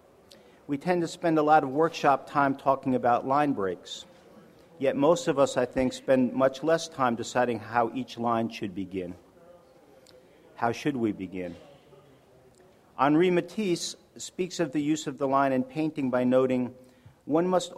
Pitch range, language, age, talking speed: 115-150 Hz, English, 50-69, 160 wpm